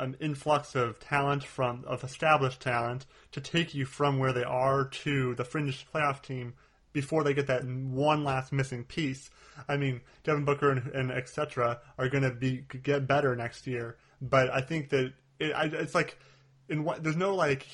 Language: English